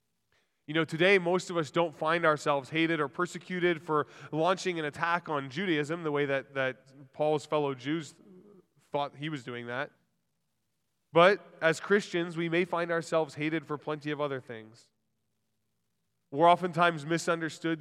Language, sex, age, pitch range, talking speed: English, male, 20-39, 140-170 Hz, 155 wpm